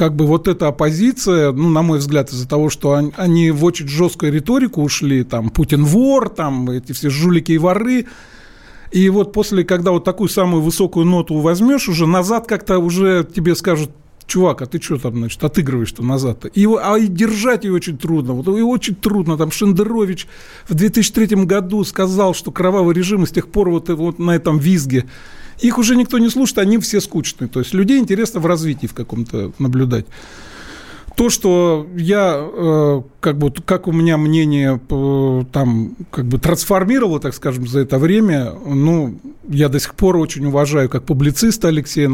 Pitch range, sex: 145-190 Hz, male